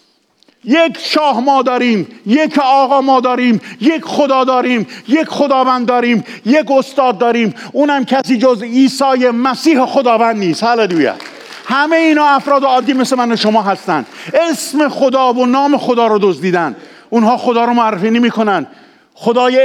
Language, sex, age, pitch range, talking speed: English, male, 50-69, 195-255 Hz, 145 wpm